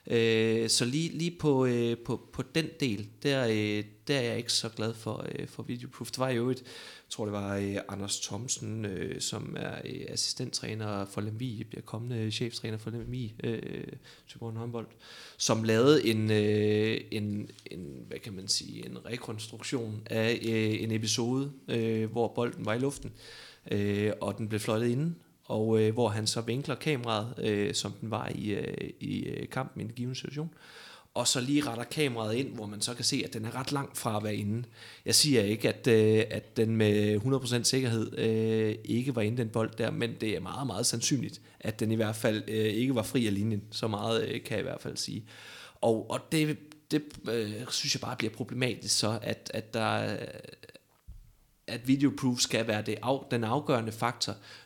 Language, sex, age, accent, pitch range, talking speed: Danish, male, 30-49, native, 110-130 Hz, 190 wpm